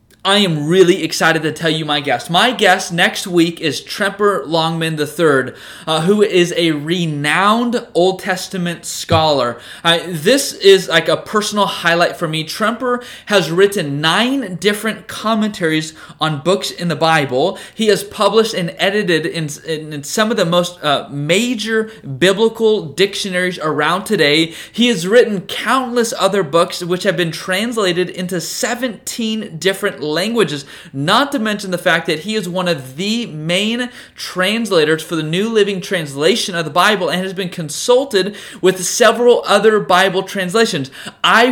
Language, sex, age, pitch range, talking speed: English, male, 20-39, 165-210 Hz, 160 wpm